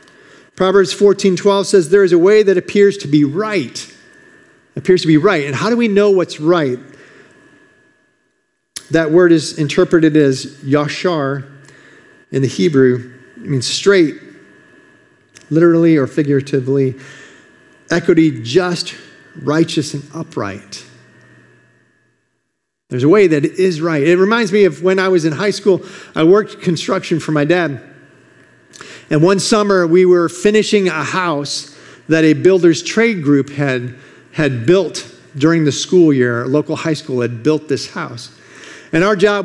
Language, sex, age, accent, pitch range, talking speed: English, male, 50-69, American, 150-205 Hz, 150 wpm